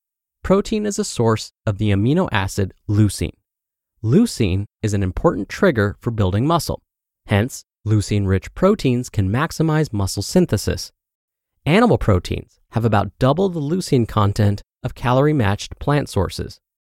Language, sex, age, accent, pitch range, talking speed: English, male, 30-49, American, 100-150 Hz, 130 wpm